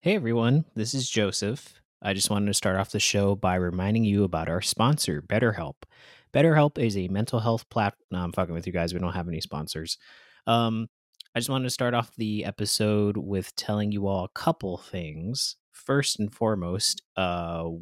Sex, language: male, English